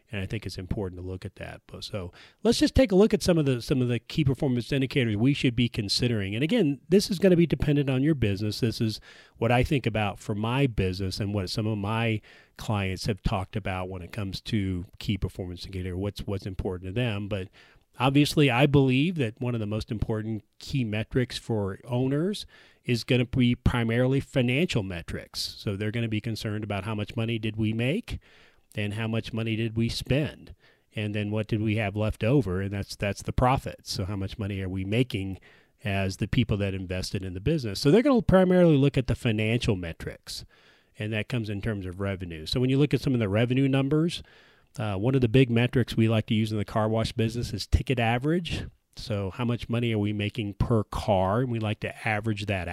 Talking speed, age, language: 225 wpm, 40-59, English